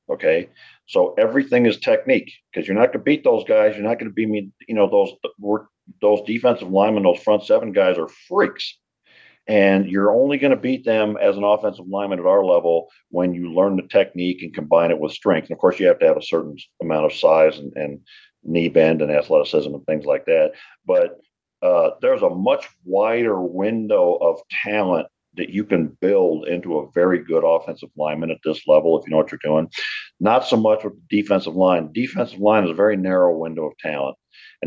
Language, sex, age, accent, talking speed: English, male, 50-69, American, 210 wpm